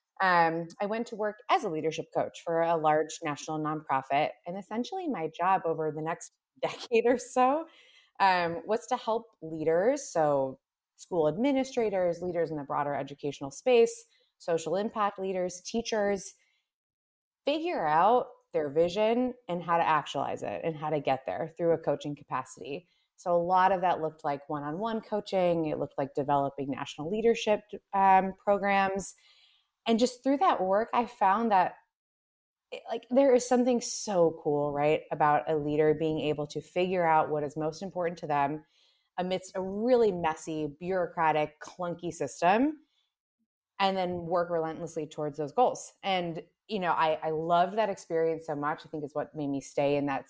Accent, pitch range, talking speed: American, 155-215 Hz, 165 wpm